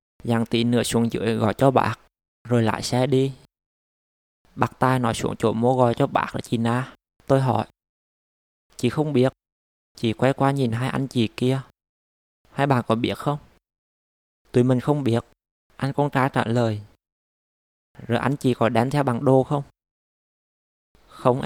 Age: 20-39